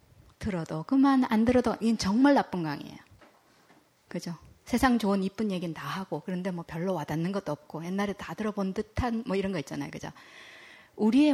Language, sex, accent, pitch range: Korean, female, native, 165-220 Hz